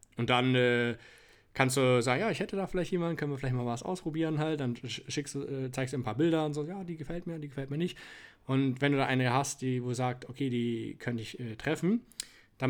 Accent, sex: German, male